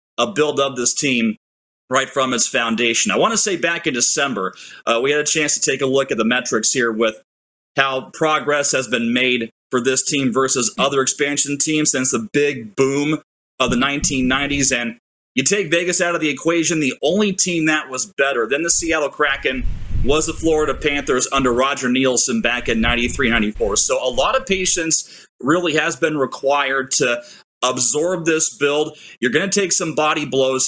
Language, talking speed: English, 190 wpm